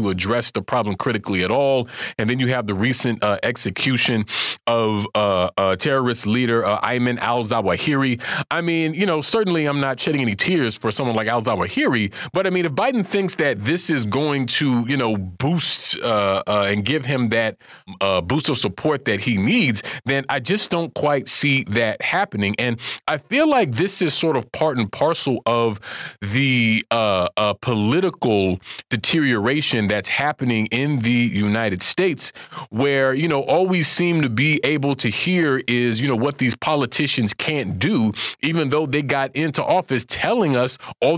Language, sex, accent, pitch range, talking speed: English, male, American, 110-155 Hz, 180 wpm